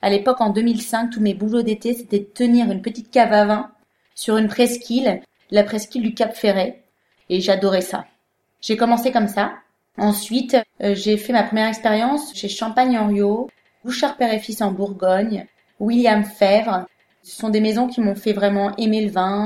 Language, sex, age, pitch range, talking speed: French, female, 20-39, 205-240 Hz, 175 wpm